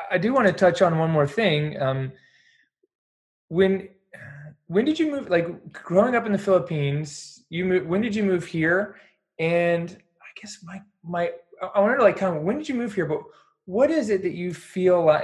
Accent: American